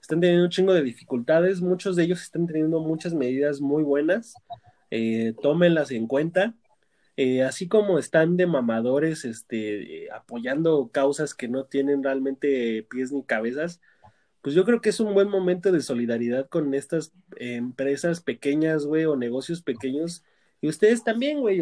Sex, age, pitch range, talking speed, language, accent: male, 20-39, 130-175 Hz, 165 wpm, Spanish, Mexican